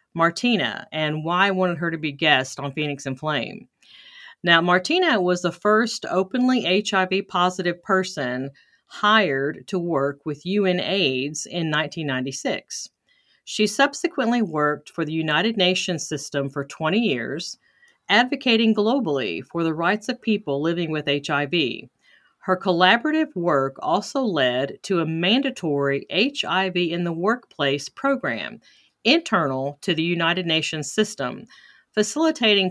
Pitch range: 155-215 Hz